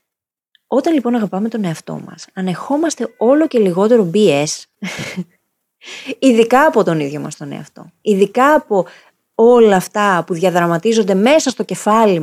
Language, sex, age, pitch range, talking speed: Greek, female, 30-49, 170-225 Hz, 130 wpm